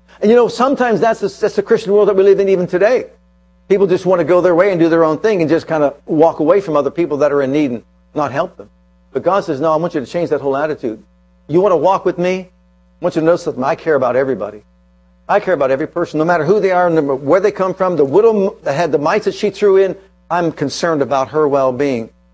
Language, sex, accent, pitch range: English, male, American, 135-185 Hz